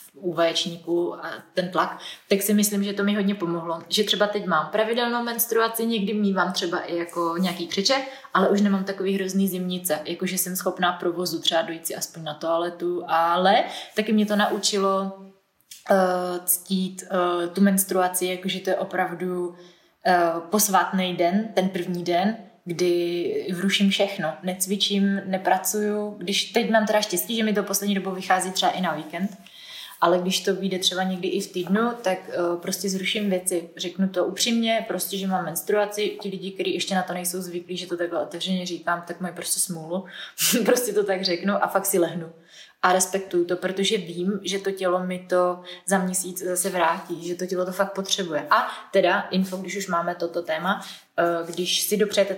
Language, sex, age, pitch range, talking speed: Czech, female, 20-39, 175-195 Hz, 180 wpm